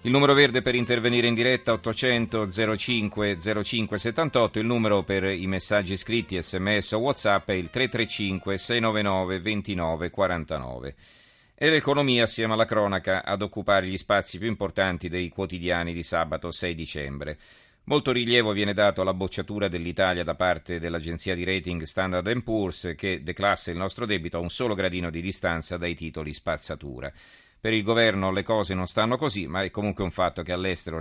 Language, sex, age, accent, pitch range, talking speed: Italian, male, 40-59, native, 85-110 Hz, 165 wpm